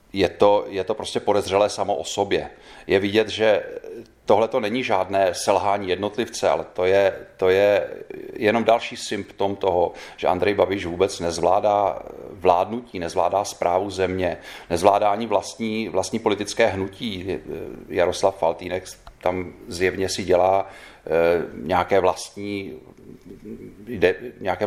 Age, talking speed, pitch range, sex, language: 30-49, 125 wpm, 85-100 Hz, male, Czech